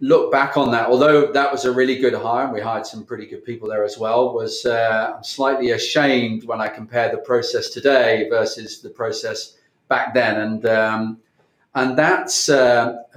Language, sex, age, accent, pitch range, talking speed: English, male, 30-49, British, 110-130 Hz, 185 wpm